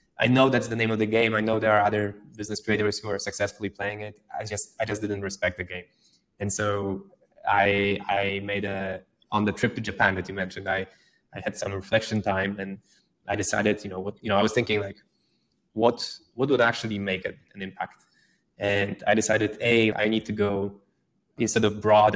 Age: 20-39